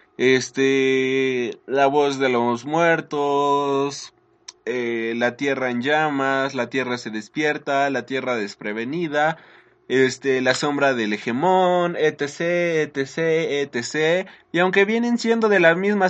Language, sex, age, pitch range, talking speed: Spanish, male, 20-39, 135-185 Hz, 125 wpm